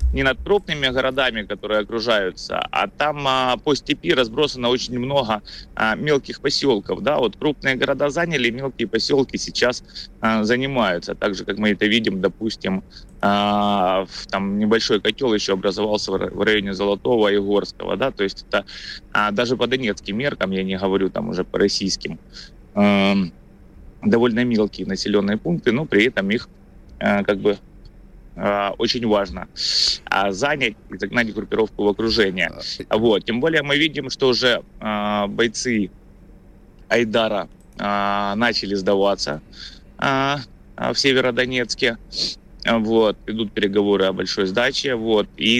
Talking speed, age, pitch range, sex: 115 wpm, 30-49, 100-120 Hz, male